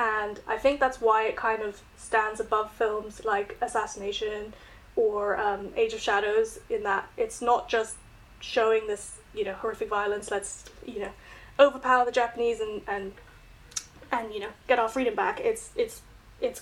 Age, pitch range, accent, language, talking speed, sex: 10-29, 220-270 Hz, British, English, 170 wpm, female